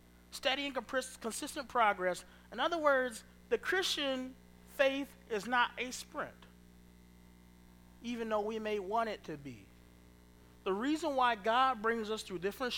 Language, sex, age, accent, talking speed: English, male, 30-49, American, 140 wpm